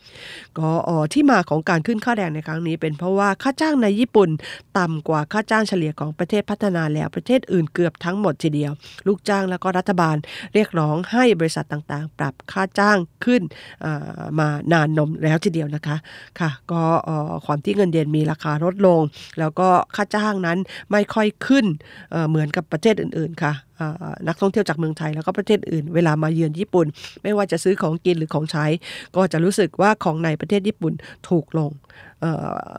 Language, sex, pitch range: Japanese, female, 155-190 Hz